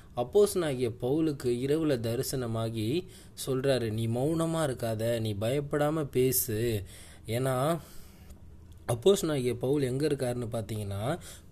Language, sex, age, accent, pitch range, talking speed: Tamil, male, 20-39, native, 110-145 Hz, 95 wpm